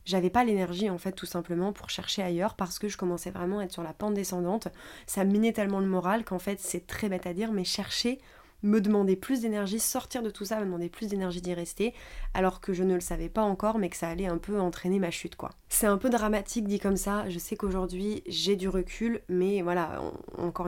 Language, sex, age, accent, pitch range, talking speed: French, female, 20-39, French, 180-205 Hz, 245 wpm